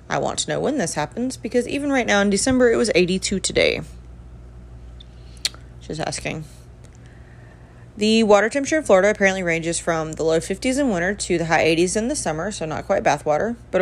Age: 30-49